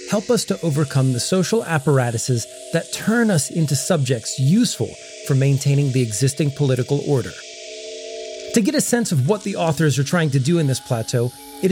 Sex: male